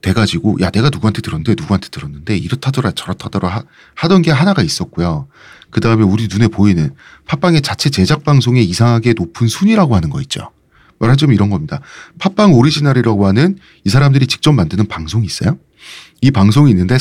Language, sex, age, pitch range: Korean, male, 40-59, 105-155 Hz